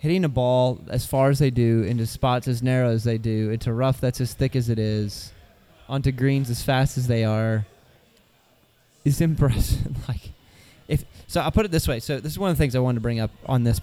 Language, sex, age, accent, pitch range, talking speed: English, male, 20-39, American, 120-155 Hz, 235 wpm